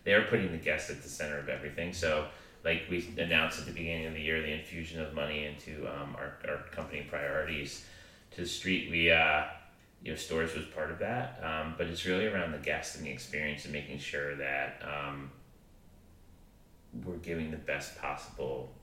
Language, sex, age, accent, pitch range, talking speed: English, male, 30-49, American, 75-85 Hz, 200 wpm